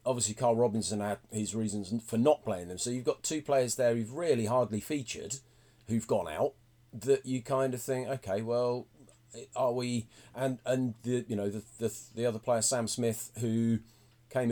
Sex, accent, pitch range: male, British, 110-130 Hz